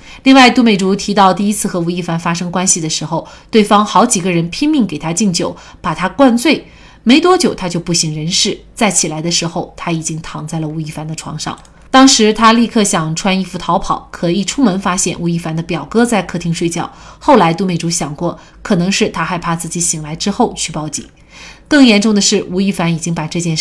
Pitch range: 170-225 Hz